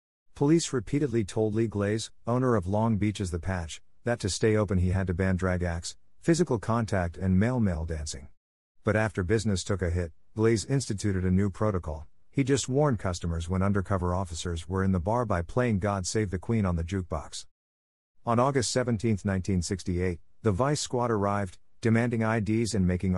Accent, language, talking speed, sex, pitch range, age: American, English, 180 wpm, male, 90-110 Hz, 50-69